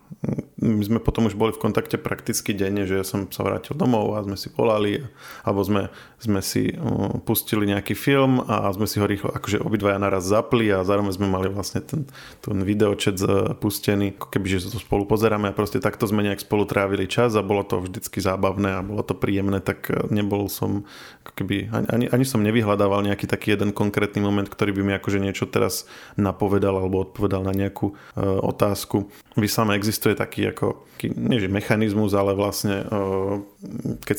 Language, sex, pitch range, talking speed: Slovak, male, 100-110 Hz, 190 wpm